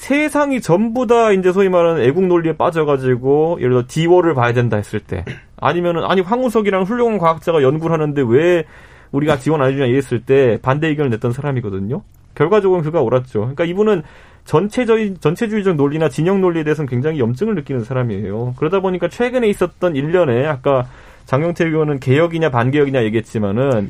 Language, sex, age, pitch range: Korean, male, 30-49, 130-190 Hz